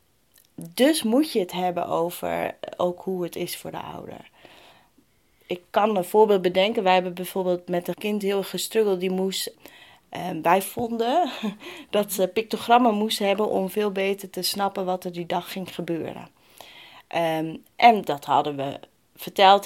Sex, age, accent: female, 30-49, Dutch